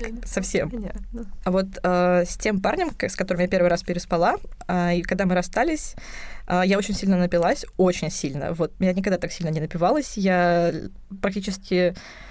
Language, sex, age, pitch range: Russian, female, 20-39, 180-235 Hz